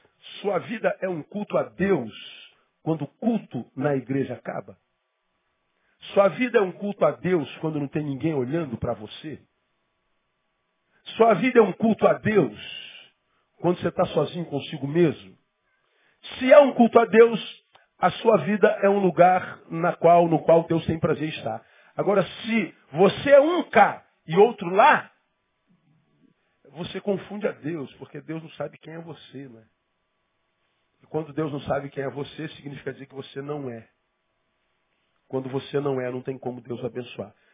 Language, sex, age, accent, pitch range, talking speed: Portuguese, male, 50-69, Brazilian, 140-195 Hz, 165 wpm